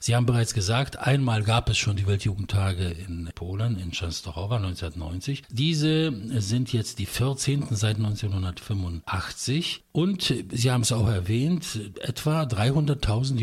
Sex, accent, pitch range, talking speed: male, German, 105-130 Hz, 135 wpm